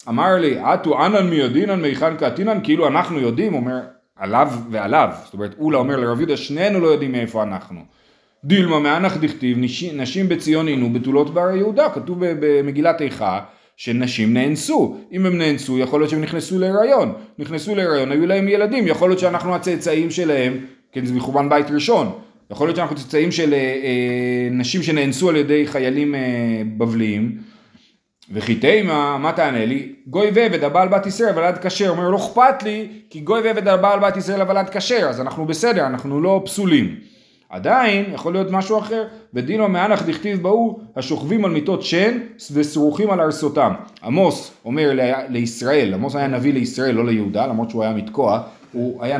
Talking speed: 160 wpm